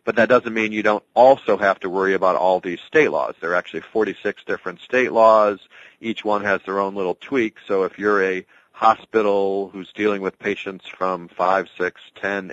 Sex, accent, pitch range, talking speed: male, American, 95-110 Hz, 200 wpm